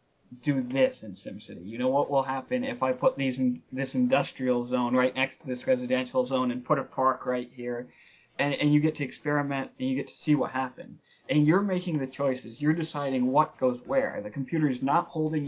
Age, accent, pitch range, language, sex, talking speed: 20-39, American, 130-160 Hz, English, male, 215 wpm